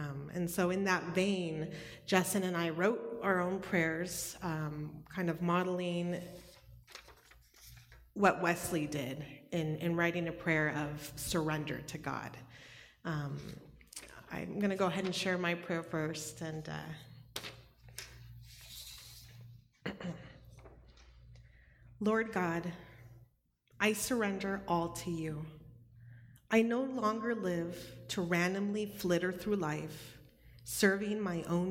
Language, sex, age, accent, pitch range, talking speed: English, female, 30-49, American, 150-185 Hz, 115 wpm